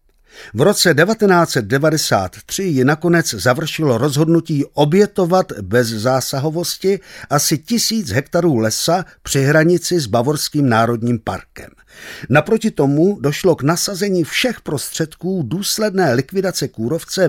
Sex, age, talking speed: male, 50-69, 105 wpm